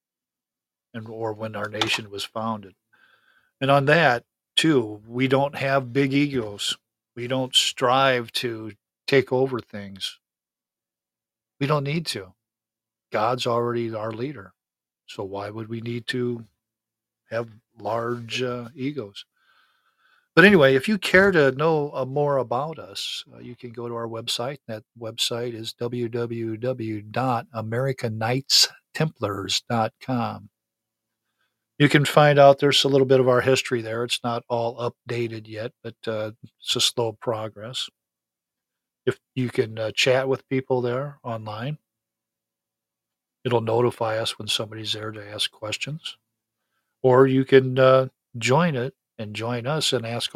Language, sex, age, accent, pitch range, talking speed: English, male, 50-69, American, 110-130 Hz, 135 wpm